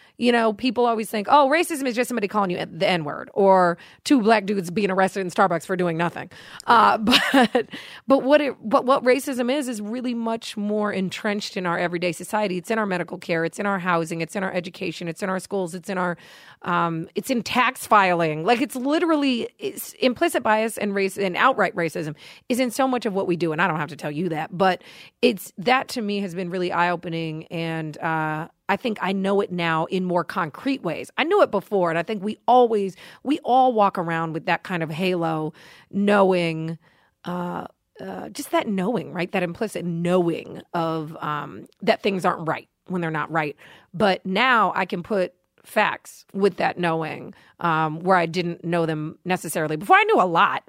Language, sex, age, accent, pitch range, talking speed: English, female, 30-49, American, 170-225 Hz, 210 wpm